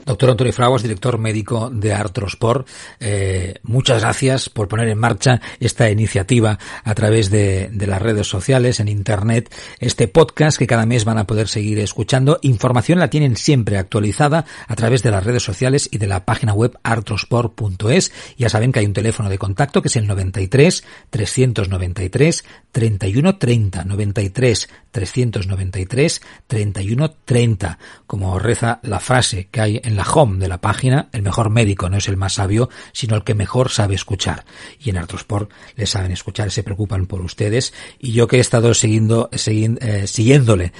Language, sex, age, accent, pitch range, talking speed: Spanish, male, 50-69, Spanish, 100-125 Hz, 170 wpm